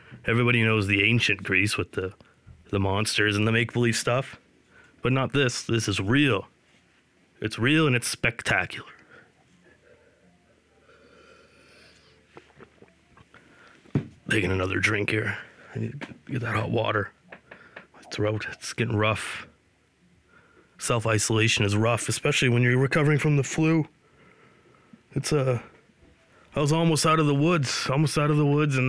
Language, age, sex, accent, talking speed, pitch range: English, 30-49, male, American, 135 wpm, 110-145 Hz